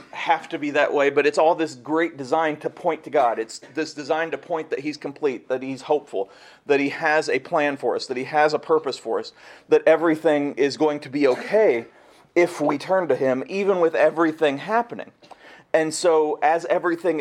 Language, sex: English, male